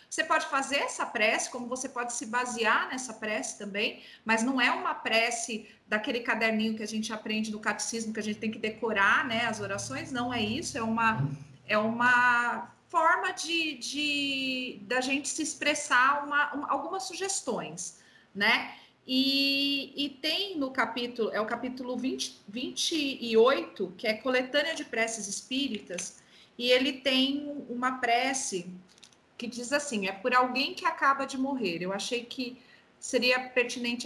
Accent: Brazilian